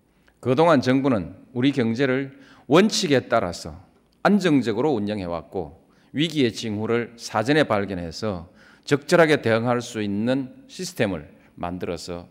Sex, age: male, 40-59